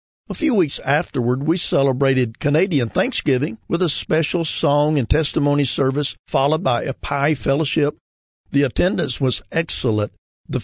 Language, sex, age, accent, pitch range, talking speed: English, male, 50-69, American, 120-155 Hz, 140 wpm